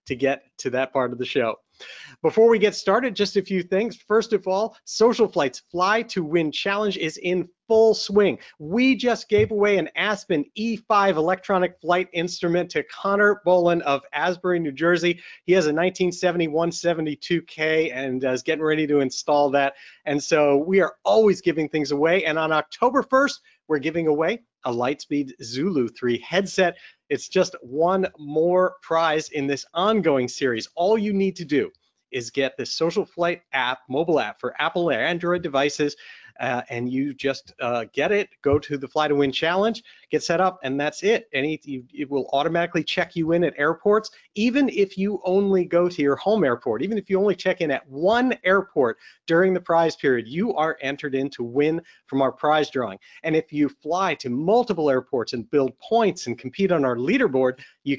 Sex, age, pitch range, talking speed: male, 40-59, 140-190 Hz, 190 wpm